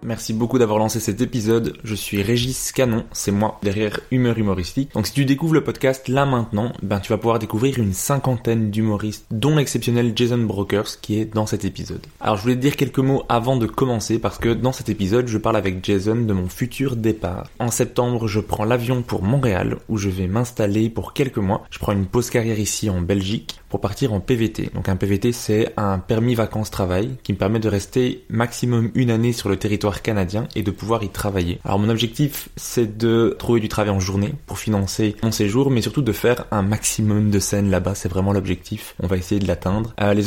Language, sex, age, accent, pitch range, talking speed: French, male, 20-39, French, 100-120 Hz, 215 wpm